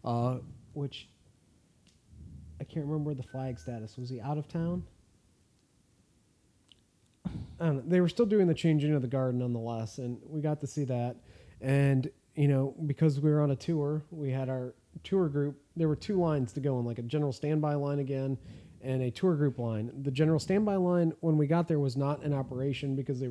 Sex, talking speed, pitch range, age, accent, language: male, 195 wpm, 125-155 Hz, 30-49, American, English